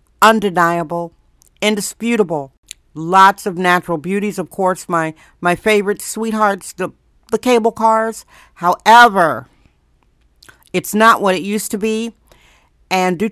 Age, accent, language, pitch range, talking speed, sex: 60-79, American, English, 175-220 Hz, 115 wpm, female